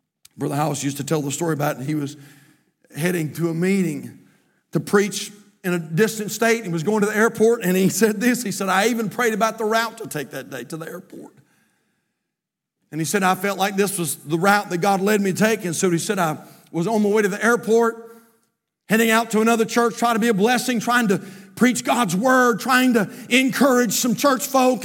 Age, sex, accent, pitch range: 50-69, male, American, 190-255 Hz